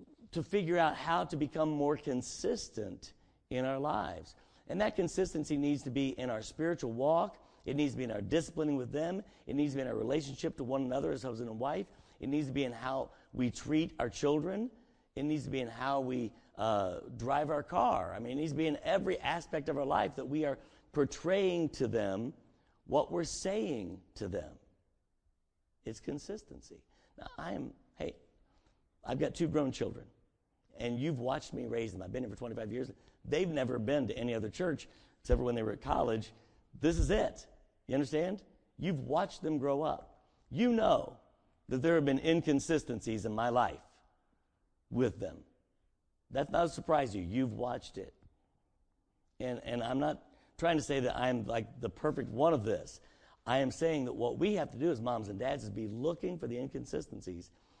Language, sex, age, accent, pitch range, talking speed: English, male, 50-69, American, 115-155 Hz, 195 wpm